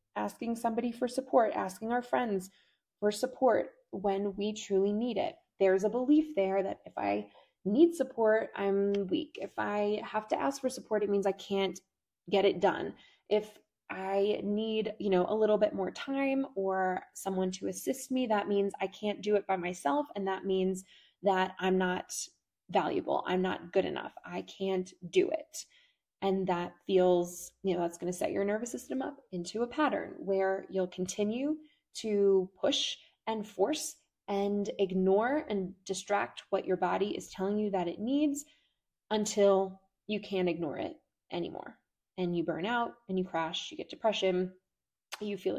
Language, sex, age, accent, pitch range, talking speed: English, female, 20-39, American, 190-230 Hz, 170 wpm